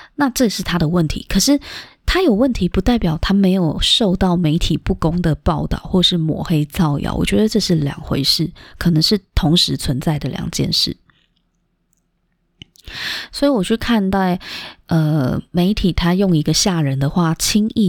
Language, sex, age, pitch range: Chinese, female, 20-39, 155-200 Hz